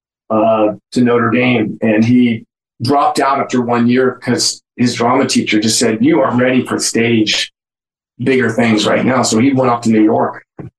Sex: male